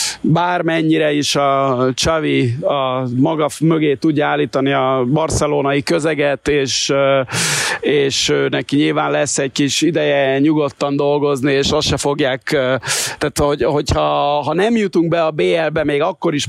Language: Hungarian